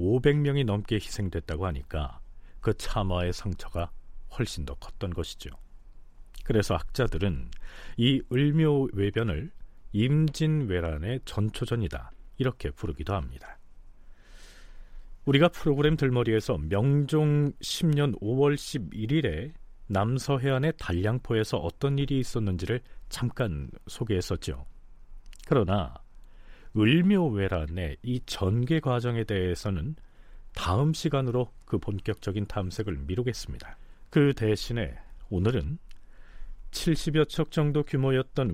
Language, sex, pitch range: Korean, male, 90-135 Hz